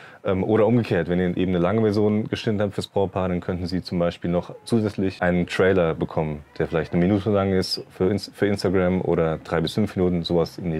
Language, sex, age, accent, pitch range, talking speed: German, male, 20-39, German, 90-110 Hz, 215 wpm